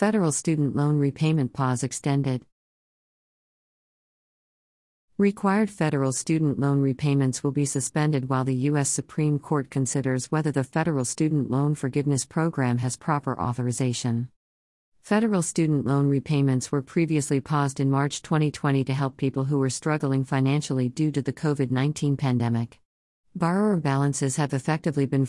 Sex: female